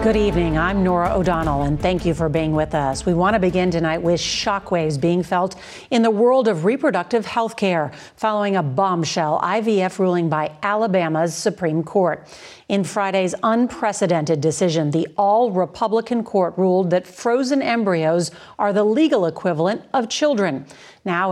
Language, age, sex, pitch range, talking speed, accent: English, 50-69, female, 170-215 Hz, 155 wpm, American